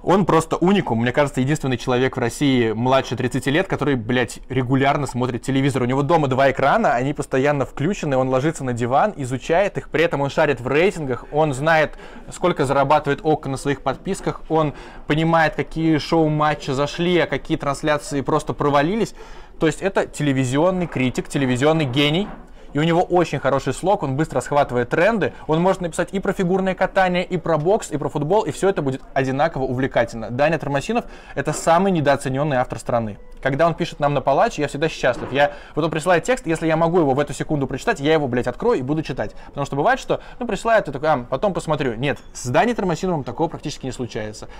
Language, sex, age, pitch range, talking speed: Russian, male, 20-39, 130-160 Hz, 195 wpm